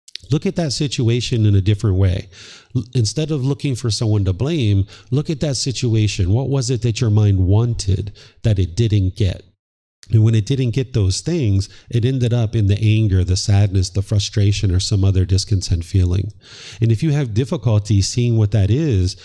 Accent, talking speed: American, 190 wpm